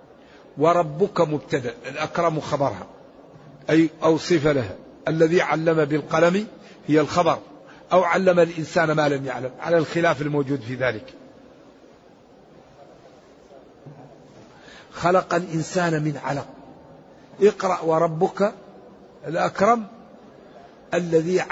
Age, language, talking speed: 50-69, Arabic, 90 wpm